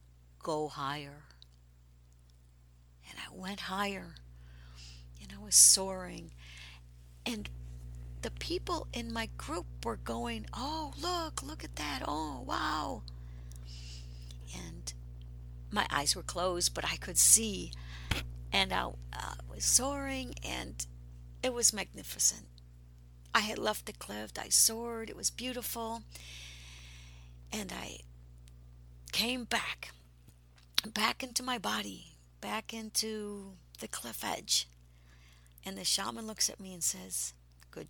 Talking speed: 120 wpm